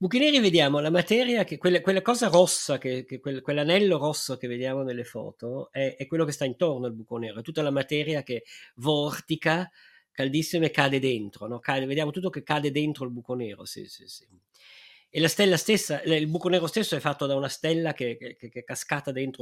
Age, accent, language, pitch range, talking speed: 50-69, native, Italian, 130-165 Hz, 215 wpm